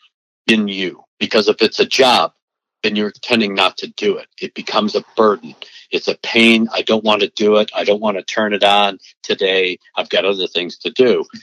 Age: 60-79